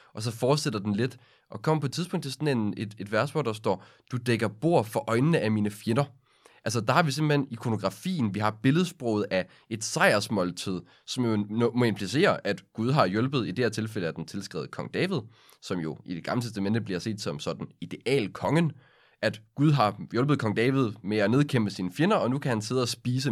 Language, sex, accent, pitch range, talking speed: Danish, male, native, 105-135 Hz, 220 wpm